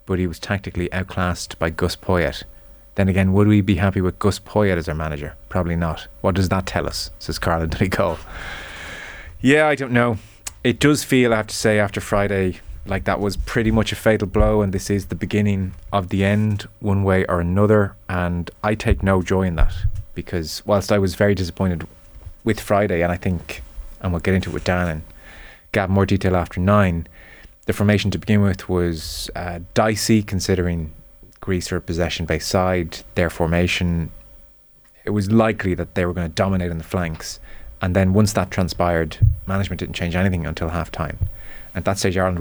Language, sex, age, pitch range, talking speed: English, male, 20-39, 85-100 Hz, 195 wpm